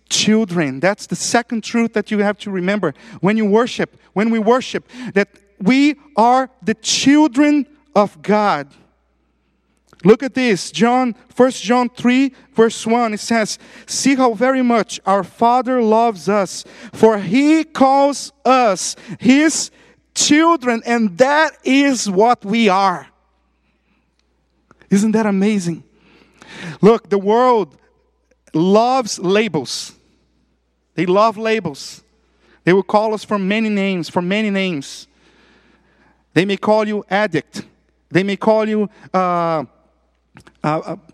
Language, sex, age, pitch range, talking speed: English, male, 50-69, 180-235 Hz, 125 wpm